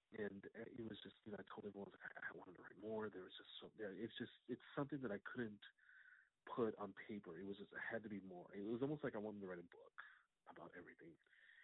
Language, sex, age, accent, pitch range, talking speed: English, male, 40-59, American, 95-115 Hz, 260 wpm